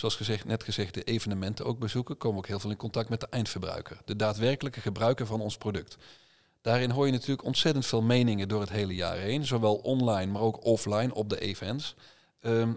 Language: Dutch